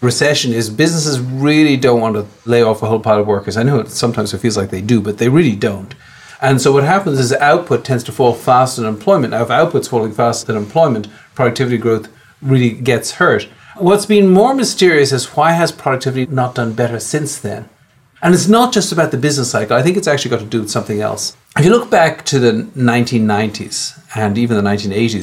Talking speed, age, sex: 220 wpm, 50-69, male